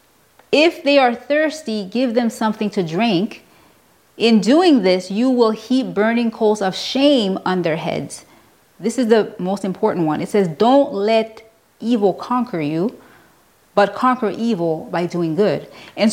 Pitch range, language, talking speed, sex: 185-240 Hz, English, 155 wpm, female